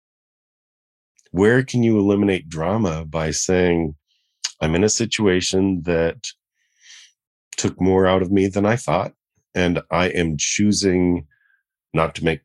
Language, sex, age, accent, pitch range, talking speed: English, male, 40-59, American, 85-105 Hz, 130 wpm